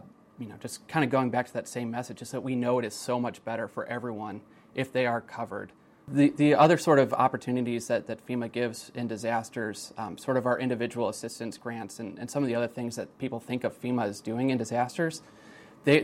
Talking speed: 230 wpm